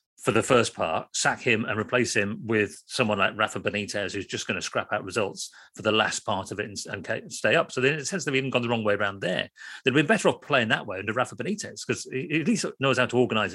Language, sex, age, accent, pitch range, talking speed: English, male, 40-59, British, 105-140 Hz, 265 wpm